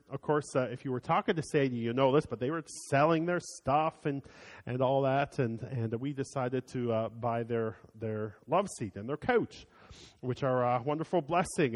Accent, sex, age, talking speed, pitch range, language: American, male, 40-59, 210 wpm, 130-180 Hz, English